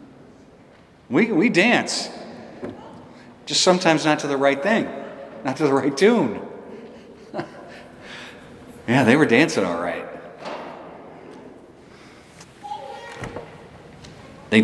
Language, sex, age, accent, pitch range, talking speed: English, male, 50-69, American, 120-155 Hz, 90 wpm